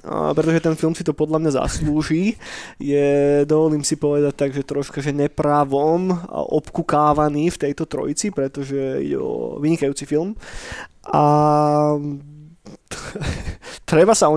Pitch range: 140-155 Hz